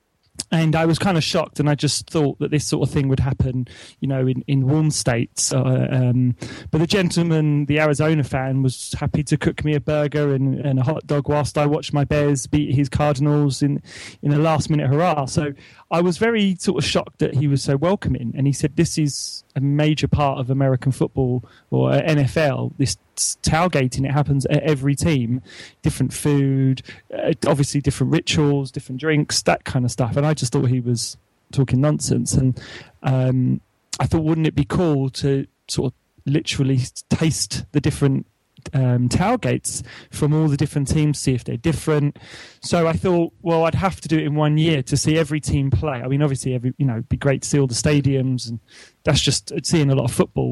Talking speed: 205 wpm